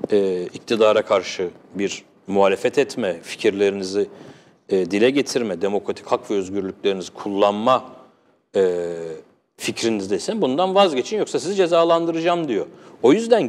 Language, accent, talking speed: Turkish, native, 100 wpm